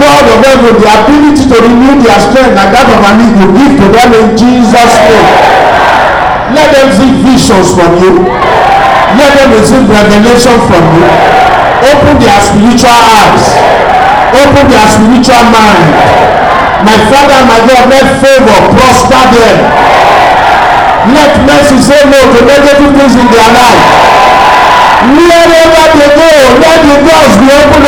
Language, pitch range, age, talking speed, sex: English, 235-295 Hz, 50-69, 140 wpm, male